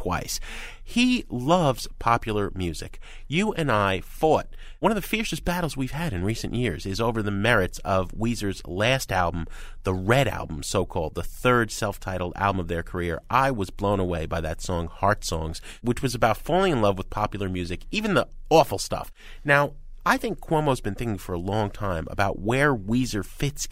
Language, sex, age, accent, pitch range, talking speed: English, male, 30-49, American, 95-145 Hz, 190 wpm